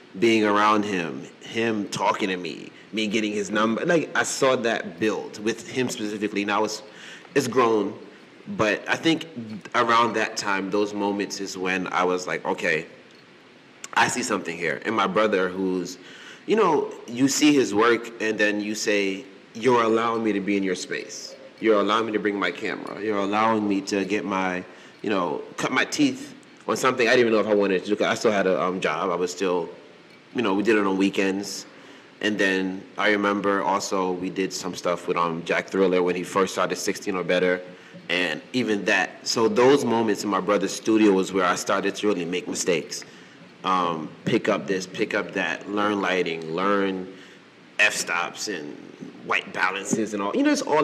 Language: English